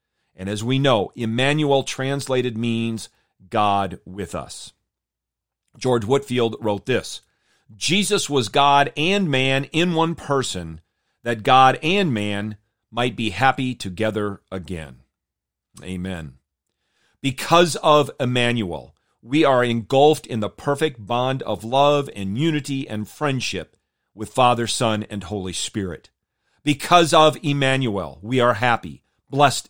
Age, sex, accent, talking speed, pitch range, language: 40-59, male, American, 125 wpm, 110-150 Hz, English